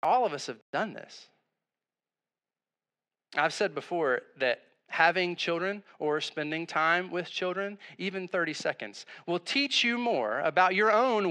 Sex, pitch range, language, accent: male, 135-190 Hz, English, American